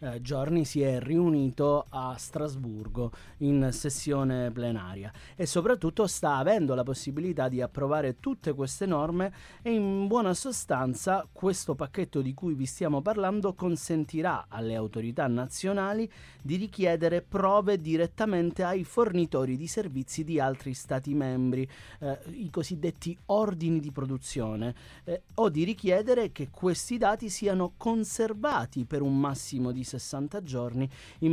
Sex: male